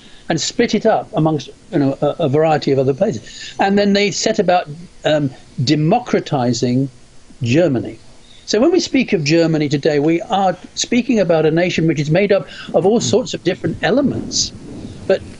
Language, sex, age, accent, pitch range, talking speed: English, male, 50-69, British, 135-195 Hz, 165 wpm